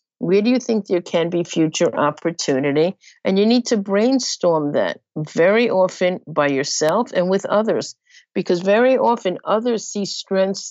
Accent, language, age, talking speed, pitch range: American, English, 50-69, 155 wpm, 155-200 Hz